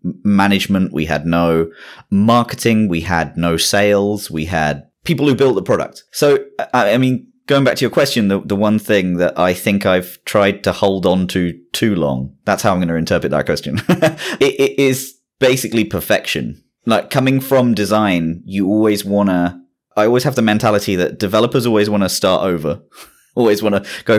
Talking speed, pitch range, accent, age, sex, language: 190 wpm, 90-115 Hz, British, 30-49, male, English